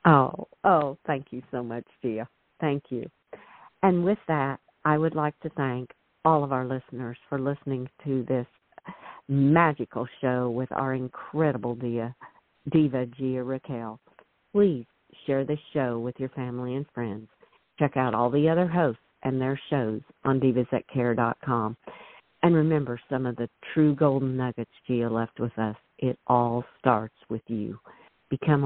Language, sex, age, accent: English, female, 50-69, American